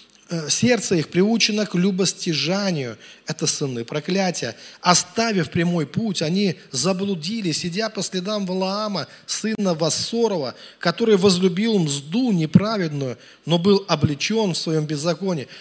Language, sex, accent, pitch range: Russian, male, native, 165-220 Hz